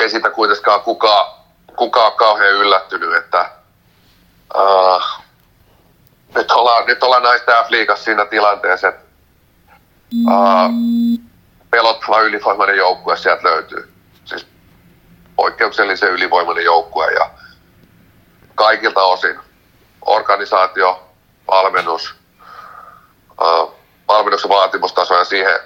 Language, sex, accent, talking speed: Finnish, male, native, 90 wpm